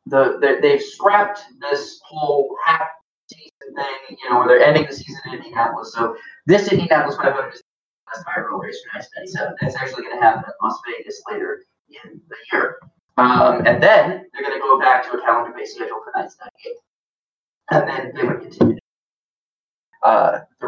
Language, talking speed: English, 175 wpm